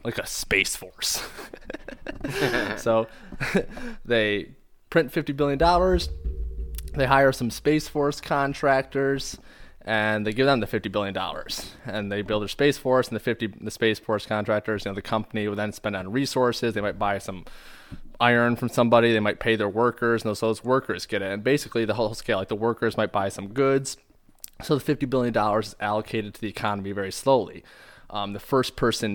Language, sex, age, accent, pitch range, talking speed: English, male, 20-39, American, 100-130 Hz, 185 wpm